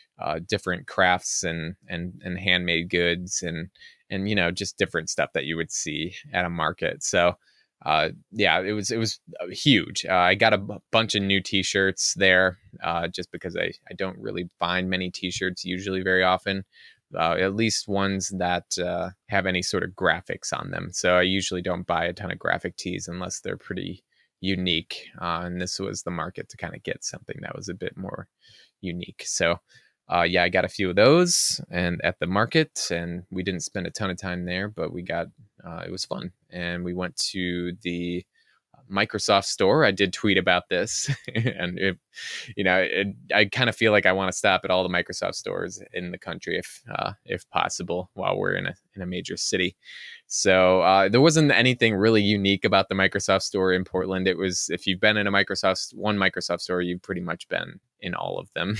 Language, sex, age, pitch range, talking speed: English, male, 20-39, 90-100 Hz, 210 wpm